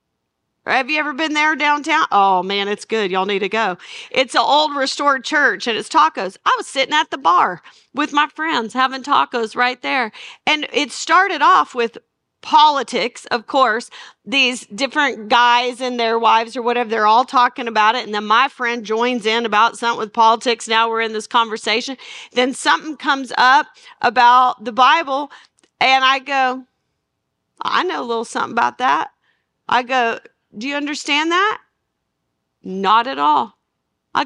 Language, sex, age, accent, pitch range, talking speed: English, female, 40-59, American, 240-300 Hz, 170 wpm